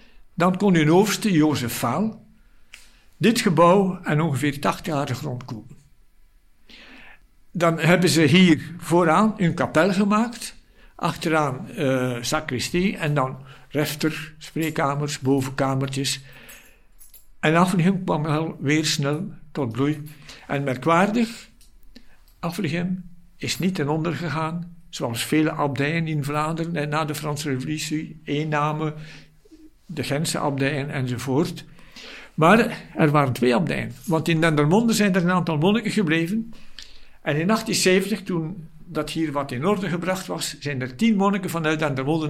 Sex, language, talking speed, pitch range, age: male, Dutch, 130 wpm, 145-180 Hz, 60-79